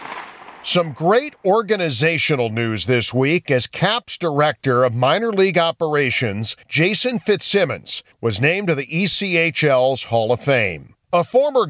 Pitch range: 135-175 Hz